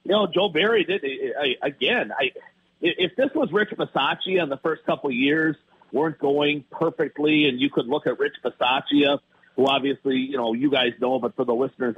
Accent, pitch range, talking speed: American, 125-155 Hz, 200 wpm